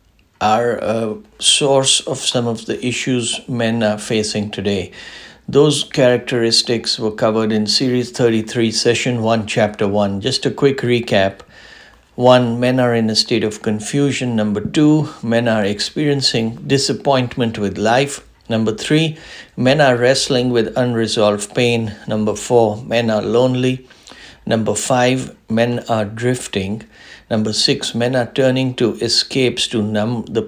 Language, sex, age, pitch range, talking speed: English, male, 60-79, 110-130 Hz, 140 wpm